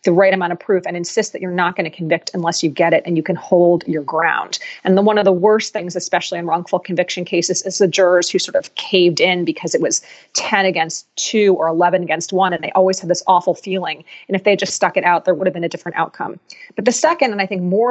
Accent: American